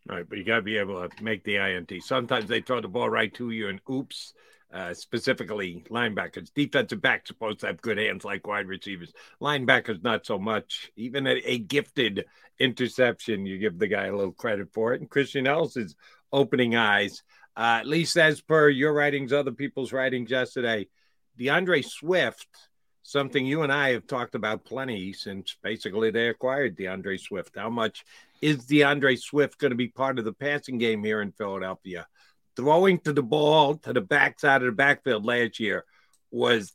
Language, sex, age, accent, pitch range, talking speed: English, male, 50-69, American, 110-145 Hz, 190 wpm